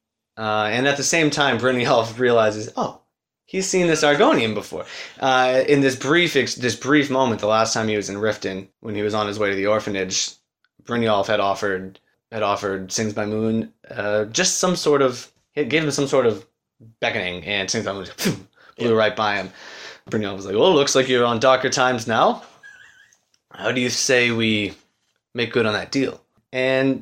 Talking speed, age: 200 wpm, 20-39